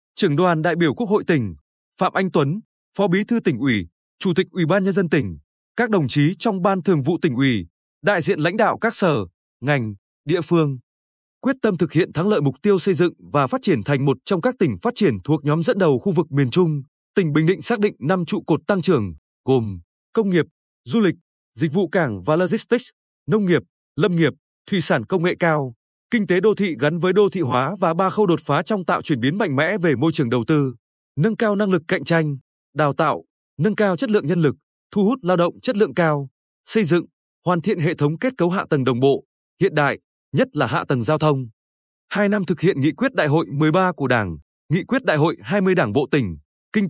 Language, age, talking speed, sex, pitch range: Vietnamese, 20-39, 235 wpm, male, 140-195 Hz